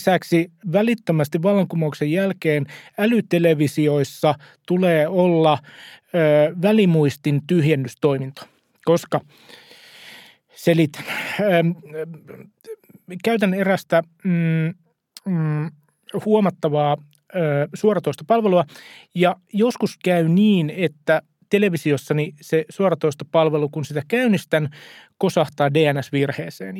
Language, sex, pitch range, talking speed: Finnish, male, 145-180 Hz, 75 wpm